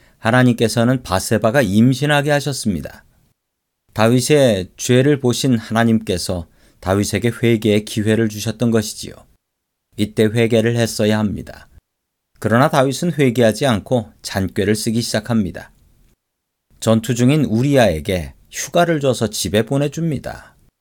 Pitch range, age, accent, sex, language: 95-130 Hz, 40-59, native, male, Korean